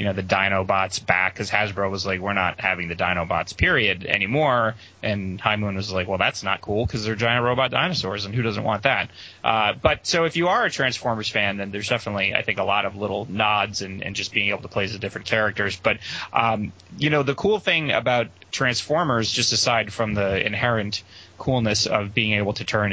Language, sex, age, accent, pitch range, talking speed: English, male, 30-49, American, 100-120 Hz, 220 wpm